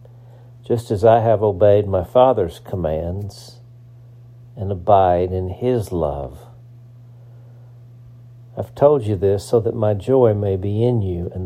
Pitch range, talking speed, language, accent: 100-120 Hz, 135 wpm, English, American